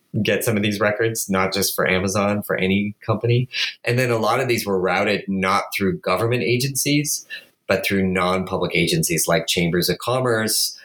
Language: English